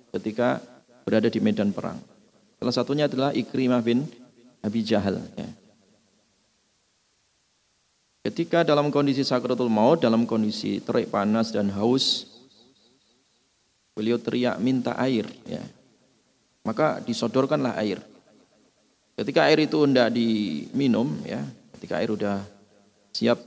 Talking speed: 105 wpm